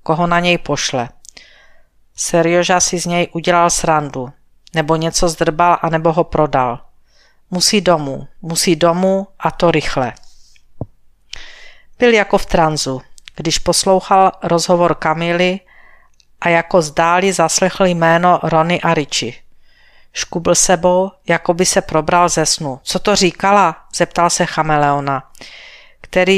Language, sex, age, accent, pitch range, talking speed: Czech, female, 50-69, native, 155-185 Hz, 125 wpm